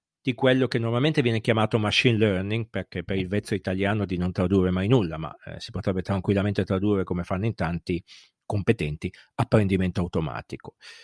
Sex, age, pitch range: male, 50-69, 100-135 Hz